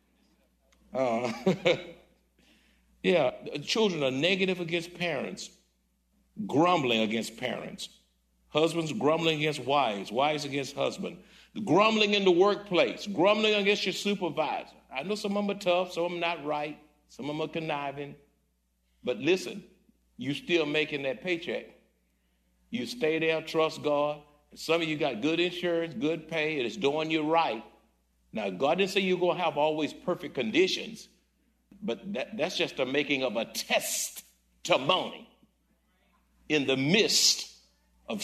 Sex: male